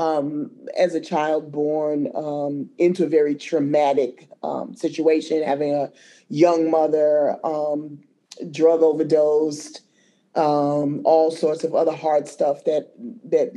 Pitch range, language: 155-180 Hz, English